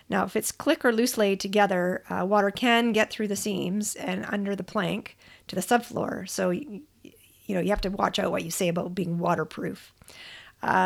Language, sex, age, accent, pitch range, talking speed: English, female, 40-59, American, 190-225 Hz, 205 wpm